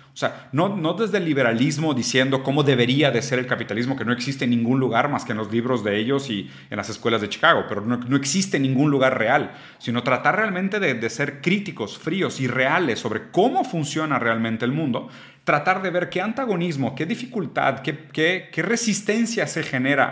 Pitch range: 120-160 Hz